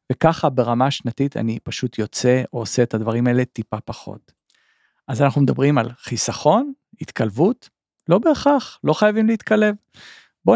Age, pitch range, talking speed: 40-59, 125-180 Hz, 140 wpm